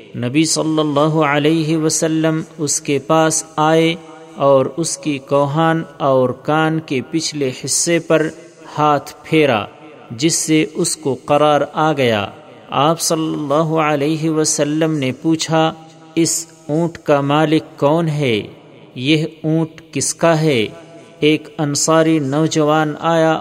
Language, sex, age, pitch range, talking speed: Urdu, male, 50-69, 145-160 Hz, 130 wpm